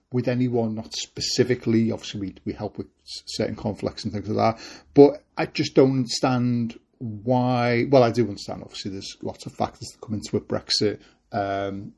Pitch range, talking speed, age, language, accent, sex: 105-135 Hz, 175 wpm, 30-49, English, British, male